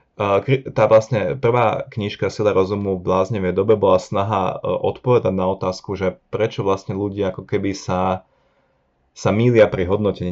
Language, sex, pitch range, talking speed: Slovak, male, 95-110 Hz, 145 wpm